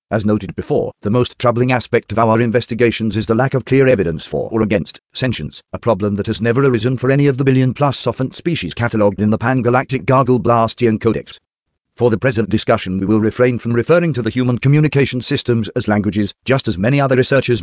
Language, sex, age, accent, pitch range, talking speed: English, male, 50-69, British, 110-130 Hz, 205 wpm